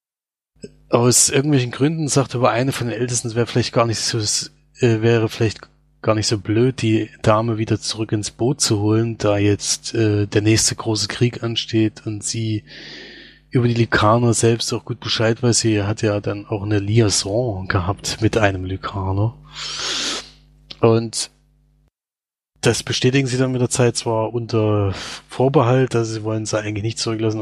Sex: male